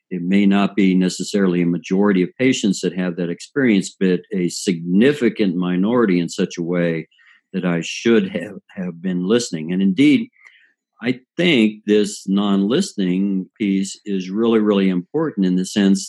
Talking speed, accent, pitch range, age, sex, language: 155 wpm, American, 90-110 Hz, 60-79, male, English